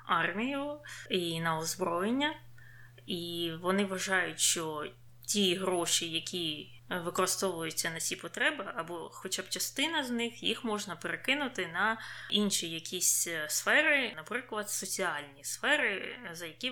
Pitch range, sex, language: 170-215 Hz, female, Ukrainian